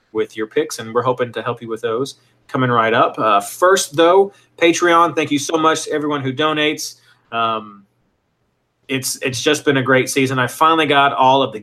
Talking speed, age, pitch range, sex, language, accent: 205 wpm, 30-49, 120-150 Hz, male, English, American